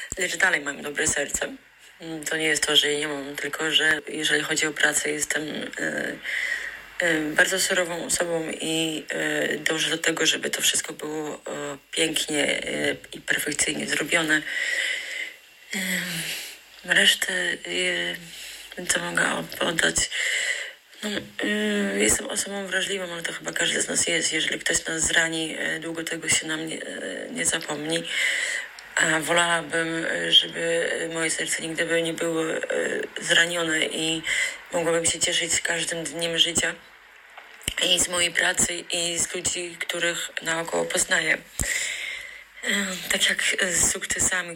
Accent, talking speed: native, 125 wpm